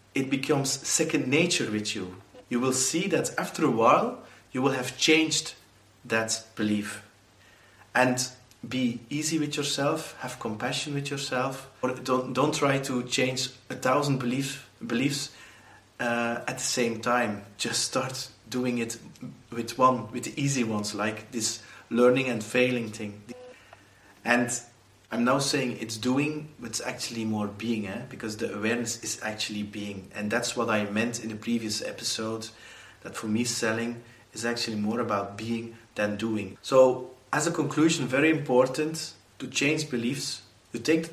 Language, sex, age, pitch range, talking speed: English, male, 30-49, 110-135 Hz, 160 wpm